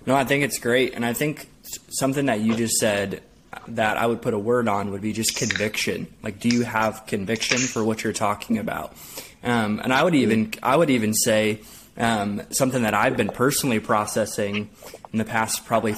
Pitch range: 105-120 Hz